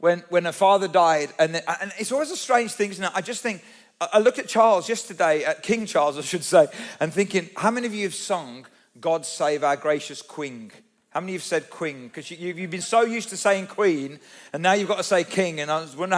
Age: 40-59